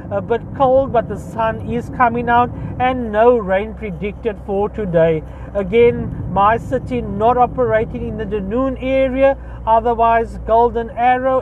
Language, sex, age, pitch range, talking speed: English, male, 40-59, 205-260 Hz, 135 wpm